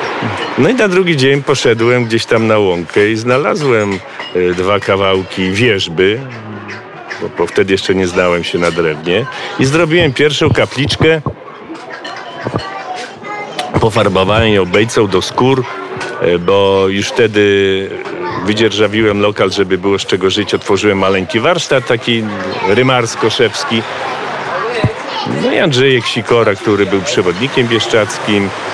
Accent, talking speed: native, 115 wpm